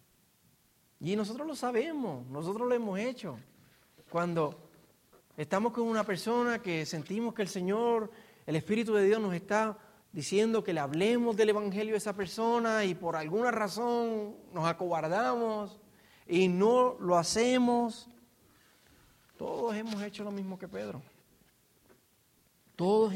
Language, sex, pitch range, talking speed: Spanish, male, 170-230 Hz, 130 wpm